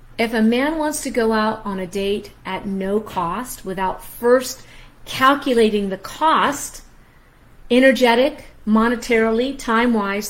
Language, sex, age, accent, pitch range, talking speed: English, female, 50-69, American, 190-245 Hz, 120 wpm